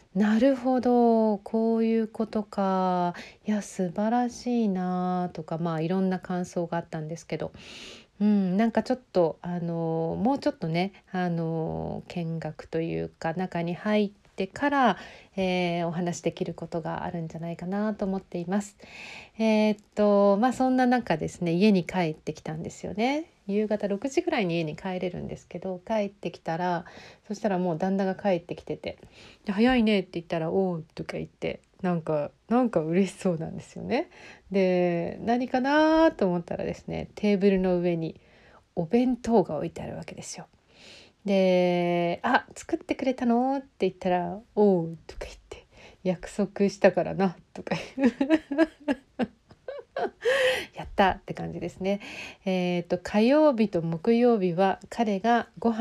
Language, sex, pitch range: Japanese, female, 175-220 Hz